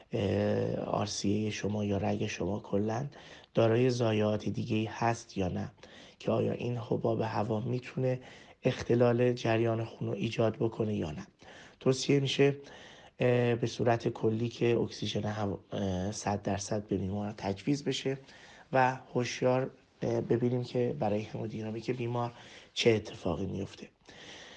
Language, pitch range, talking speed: Persian, 105-125 Hz, 125 wpm